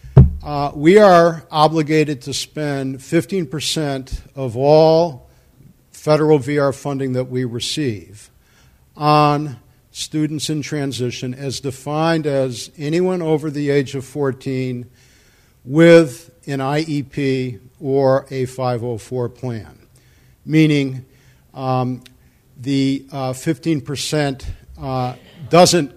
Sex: male